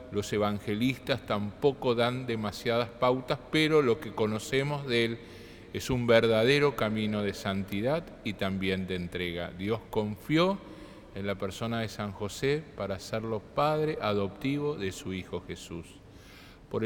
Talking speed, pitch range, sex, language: 140 wpm, 105-140 Hz, male, Spanish